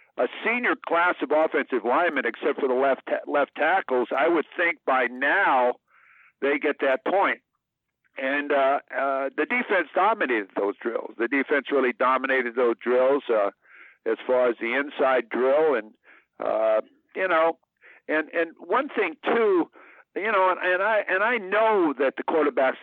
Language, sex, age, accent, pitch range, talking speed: English, male, 60-79, American, 125-165 Hz, 165 wpm